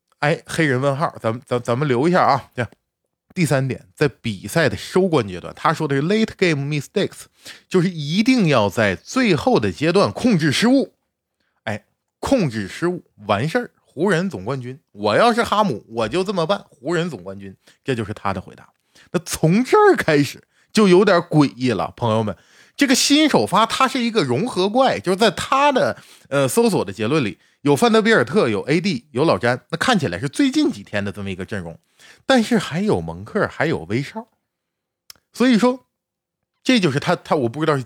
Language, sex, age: Chinese, male, 20-39